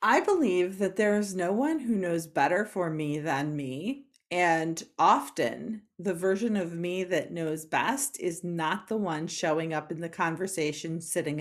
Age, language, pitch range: 40-59, English, 165-210 Hz